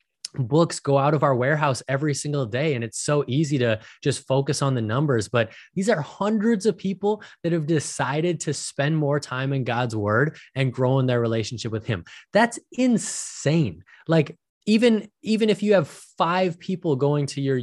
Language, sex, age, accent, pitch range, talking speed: English, male, 20-39, American, 120-160 Hz, 185 wpm